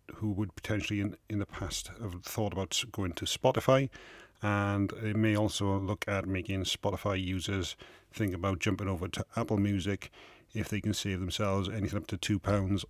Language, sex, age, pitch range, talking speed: English, male, 40-59, 100-115 Hz, 180 wpm